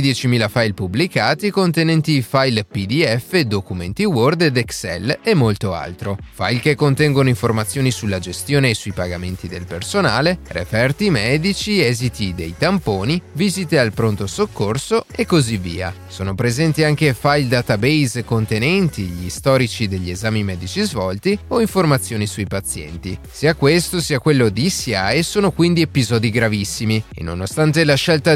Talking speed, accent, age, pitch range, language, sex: 140 wpm, native, 30-49, 105-160 Hz, Italian, male